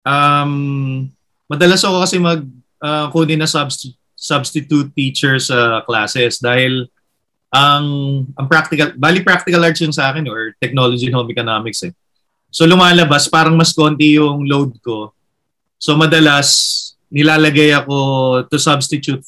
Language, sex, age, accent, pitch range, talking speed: Filipino, male, 30-49, native, 130-165 Hz, 130 wpm